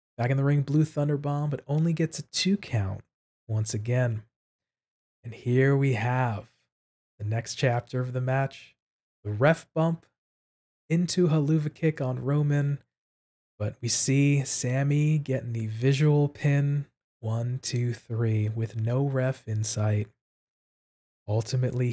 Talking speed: 135 wpm